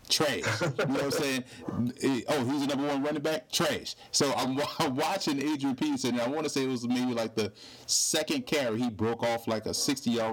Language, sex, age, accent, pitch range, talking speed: English, male, 30-49, American, 120-155 Hz, 220 wpm